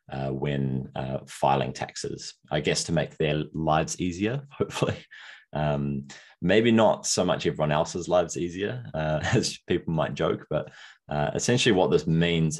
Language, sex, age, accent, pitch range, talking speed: English, male, 20-39, Australian, 70-95 Hz, 155 wpm